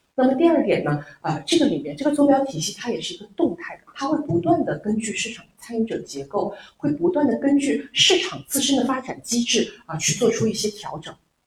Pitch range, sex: 180-265 Hz, female